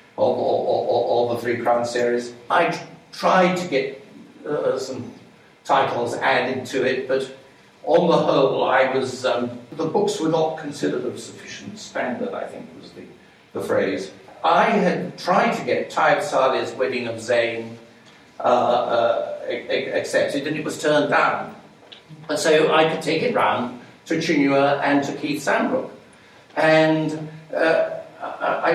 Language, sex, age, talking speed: English, male, 60-79, 145 wpm